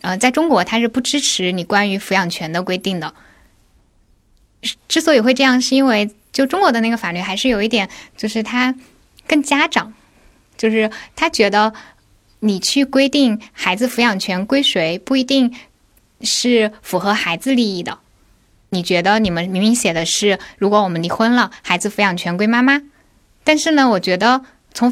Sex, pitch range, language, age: female, 185-250 Hz, Chinese, 10-29